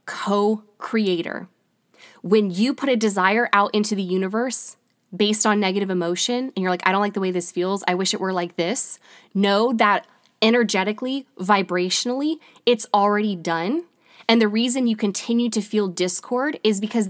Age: 20-39